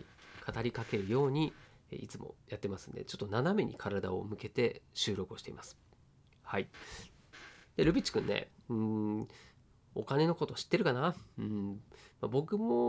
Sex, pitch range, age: male, 110-180 Hz, 40-59